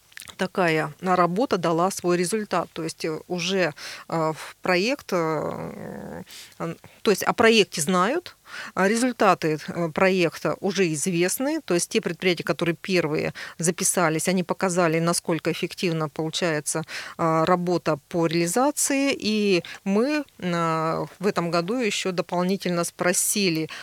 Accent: native